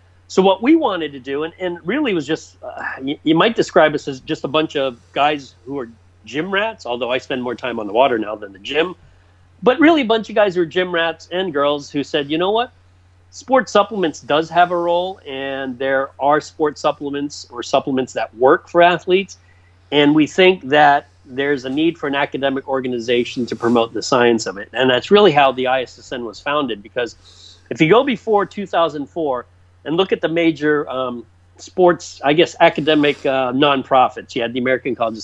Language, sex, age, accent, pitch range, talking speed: English, male, 40-59, American, 120-165 Hz, 210 wpm